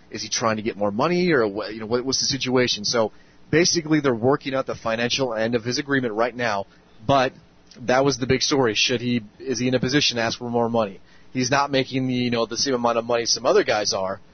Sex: male